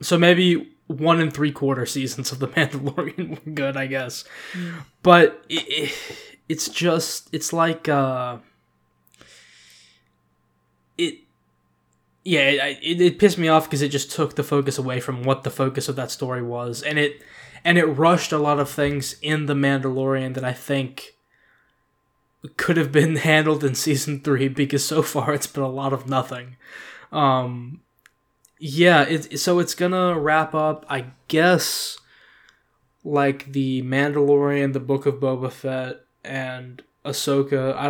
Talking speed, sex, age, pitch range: 145 wpm, male, 20-39, 130-155 Hz